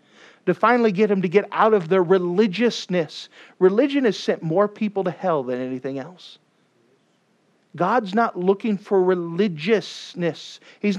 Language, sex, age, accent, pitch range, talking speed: English, male, 50-69, American, 170-225 Hz, 140 wpm